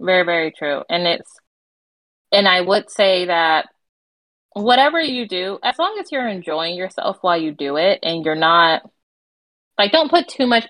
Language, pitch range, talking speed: English, 155-190 Hz, 175 wpm